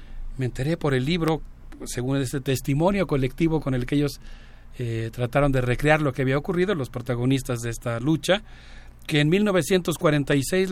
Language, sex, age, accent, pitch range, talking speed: Spanish, male, 40-59, Mexican, 125-150 Hz, 160 wpm